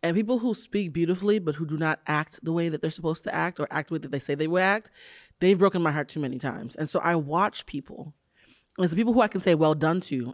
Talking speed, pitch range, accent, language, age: 290 wpm, 145-200 Hz, American, English, 30-49